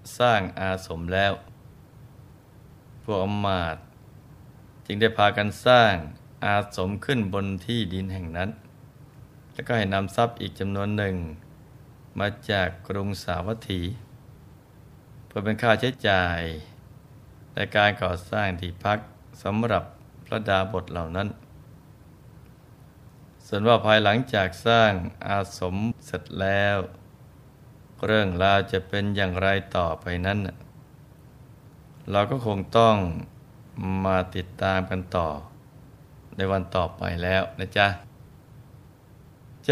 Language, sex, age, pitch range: Thai, male, 20-39, 95-125 Hz